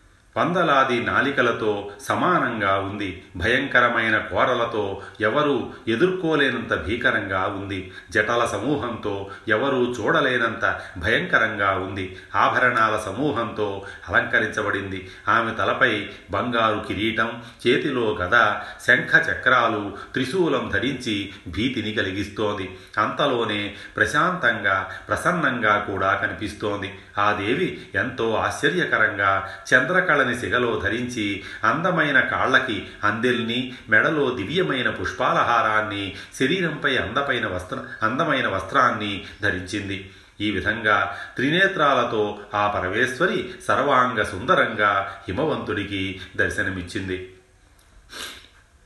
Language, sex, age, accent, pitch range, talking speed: Telugu, male, 30-49, native, 95-110 Hz, 75 wpm